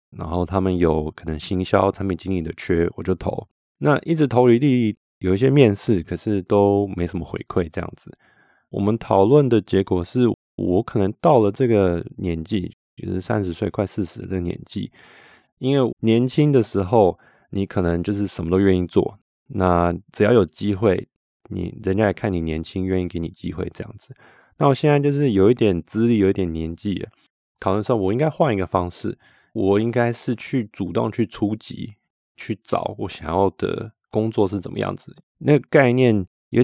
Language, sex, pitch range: Chinese, male, 90-115 Hz